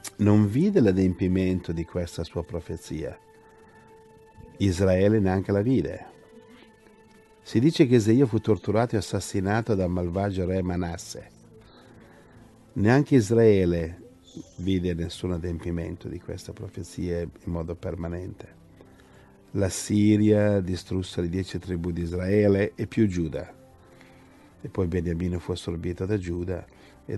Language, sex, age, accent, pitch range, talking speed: Italian, male, 50-69, native, 90-105 Hz, 115 wpm